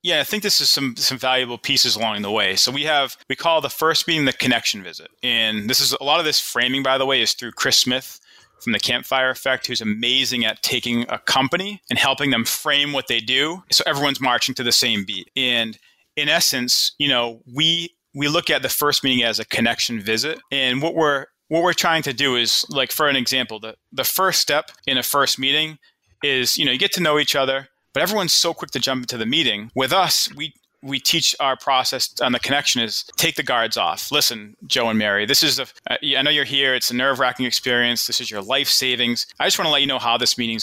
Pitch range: 120-150 Hz